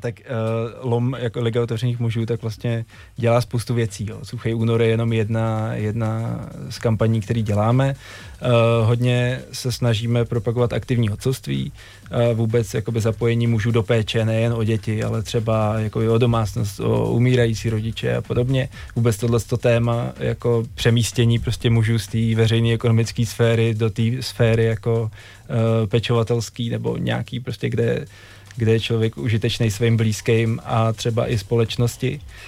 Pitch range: 110-120 Hz